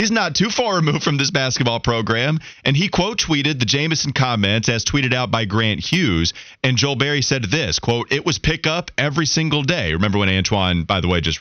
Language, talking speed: English, 215 wpm